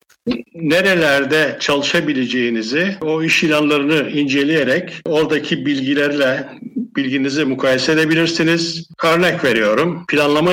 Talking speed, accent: 80 wpm, native